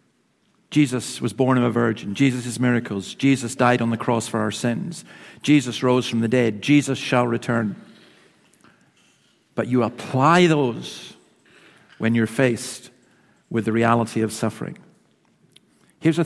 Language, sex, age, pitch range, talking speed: English, male, 50-69, 120-140 Hz, 145 wpm